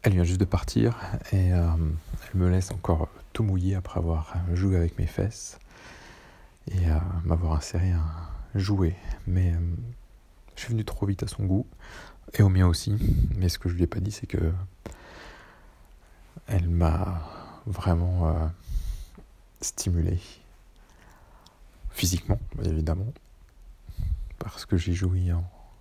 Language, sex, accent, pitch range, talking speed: French, male, French, 85-100 Hz, 145 wpm